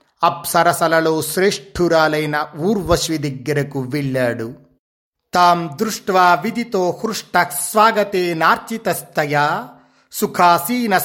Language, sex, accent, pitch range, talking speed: Telugu, male, native, 135-175 Hz, 60 wpm